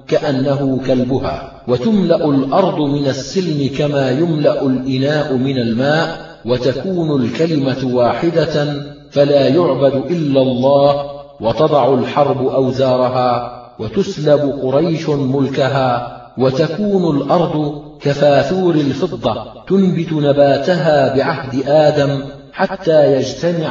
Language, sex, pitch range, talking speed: Arabic, male, 135-155 Hz, 85 wpm